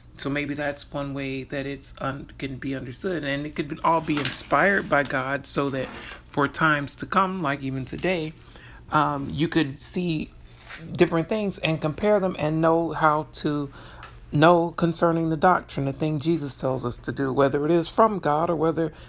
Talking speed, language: 185 wpm, English